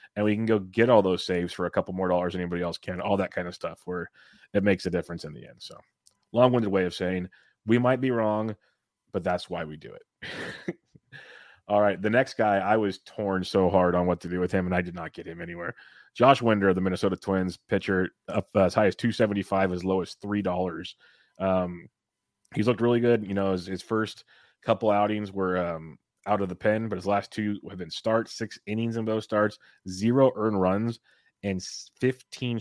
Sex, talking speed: male, 225 wpm